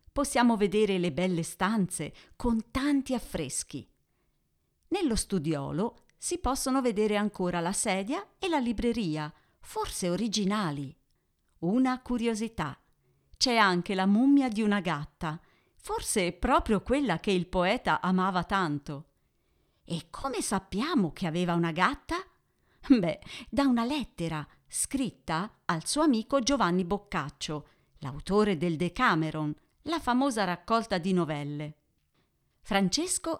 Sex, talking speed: female, 115 wpm